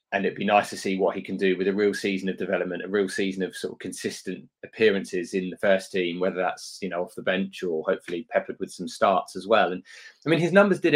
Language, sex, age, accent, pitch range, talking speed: English, male, 20-39, British, 95-110 Hz, 270 wpm